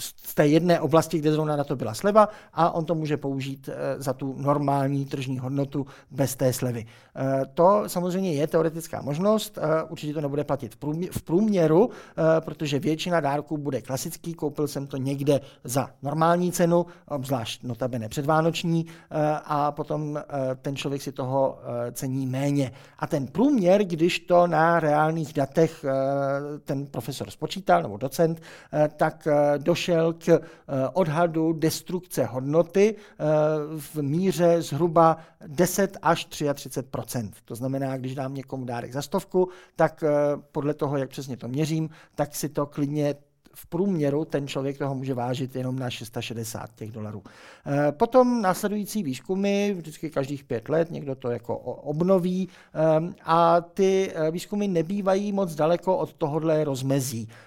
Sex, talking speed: male, 140 wpm